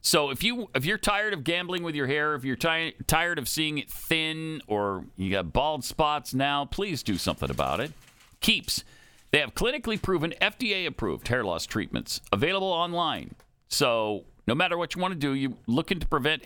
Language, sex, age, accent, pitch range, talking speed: English, male, 50-69, American, 120-165 Hz, 195 wpm